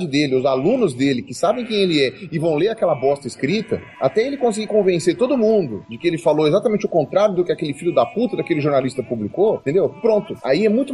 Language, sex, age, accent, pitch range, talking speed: Portuguese, male, 30-49, Brazilian, 135-215 Hz, 230 wpm